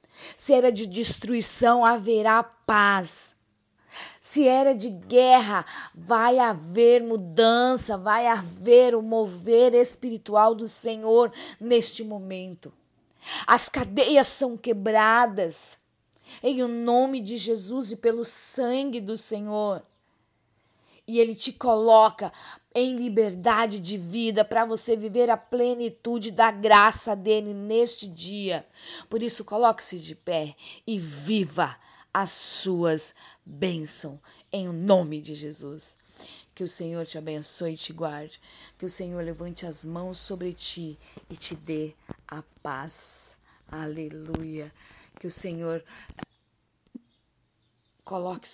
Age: 20-39